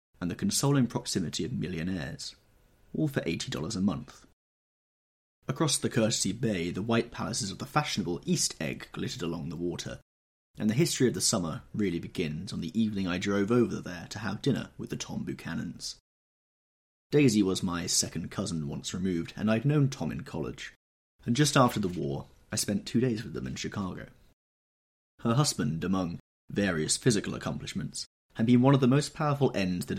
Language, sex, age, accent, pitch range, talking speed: English, male, 30-49, British, 90-125 Hz, 180 wpm